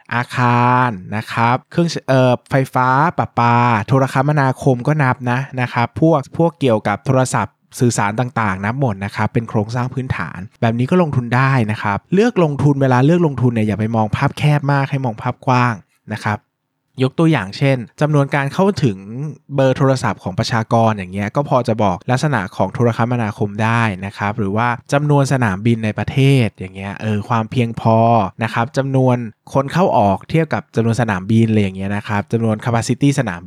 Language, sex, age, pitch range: Thai, male, 20-39, 110-140 Hz